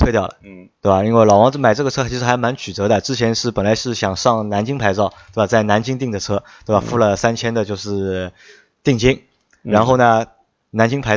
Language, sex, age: Chinese, male, 20-39